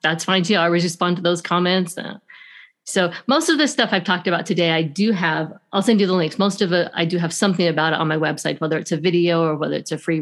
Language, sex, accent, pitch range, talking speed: English, female, American, 170-205 Hz, 275 wpm